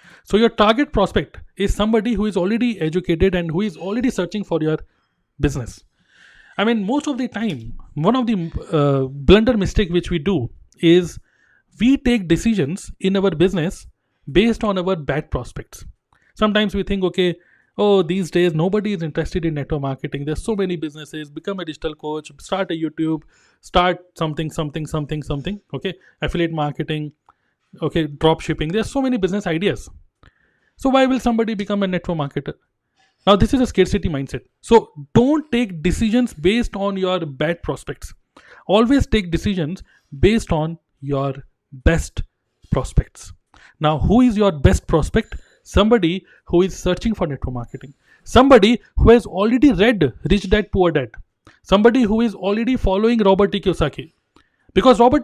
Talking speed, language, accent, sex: 160 wpm, Hindi, native, male